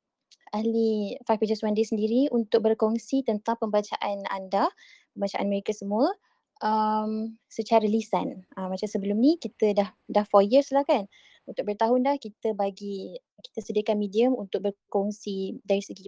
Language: Malay